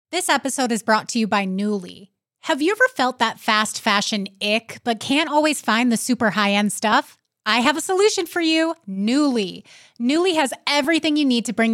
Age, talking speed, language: 20-39, 200 wpm, English